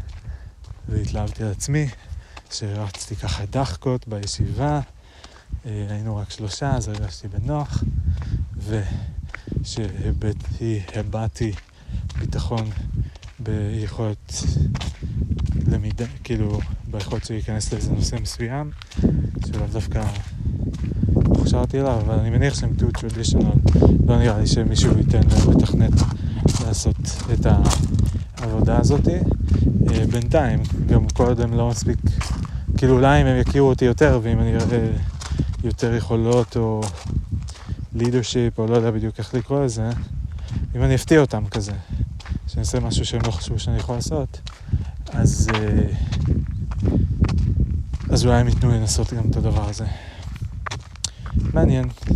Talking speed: 110 wpm